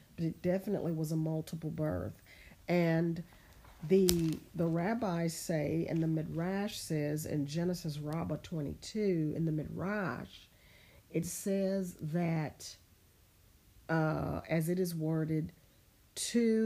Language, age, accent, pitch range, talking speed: English, 40-59, American, 145-175 Hz, 115 wpm